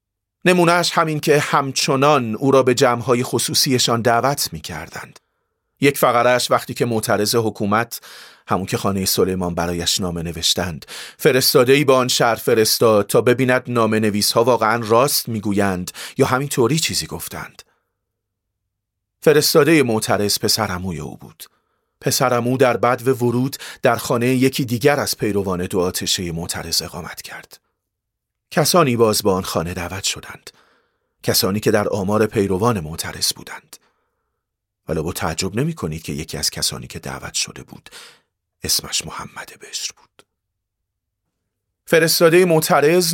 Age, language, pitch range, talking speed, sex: 40-59, Persian, 95-135 Hz, 140 wpm, male